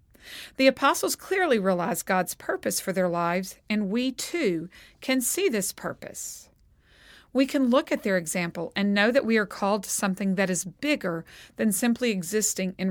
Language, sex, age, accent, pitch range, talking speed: English, female, 40-59, American, 190-250 Hz, 170 wpm